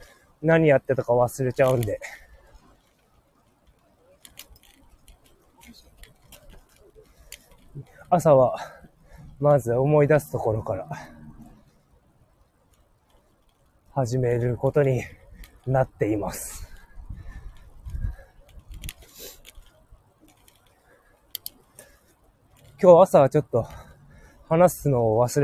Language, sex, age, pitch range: Japanese, male, 20-39, 105-150 Hz